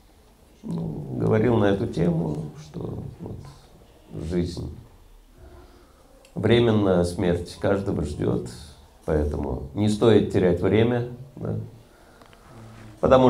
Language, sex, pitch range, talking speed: Russian, male, 75-110 Hz, 85 wpm